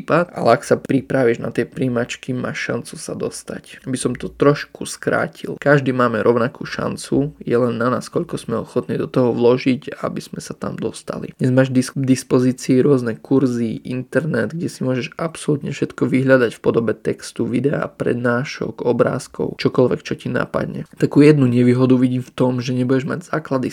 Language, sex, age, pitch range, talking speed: Slovak, male, 20-39, 120-135 Hz, 170 wpm